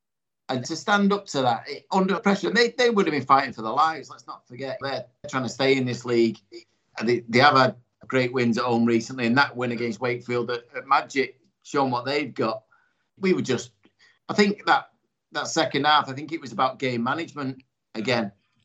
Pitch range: 120-145 Hz